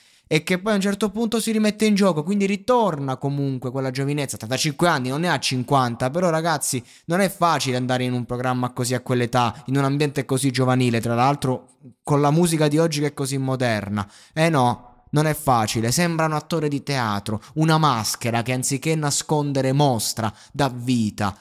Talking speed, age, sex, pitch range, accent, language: 195 wpm, 20-39, male, 115-145 Hz, native, Italian